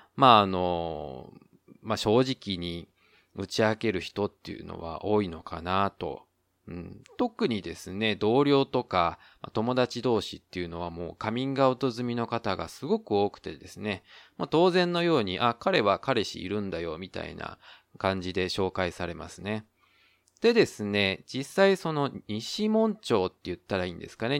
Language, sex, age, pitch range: Japanese, male, 20-39, 90-125 Hz